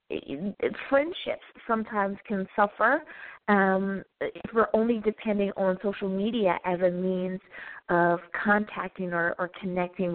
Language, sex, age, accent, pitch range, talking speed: English, female, 20-39, American, 185-225 Hz, 130 wpm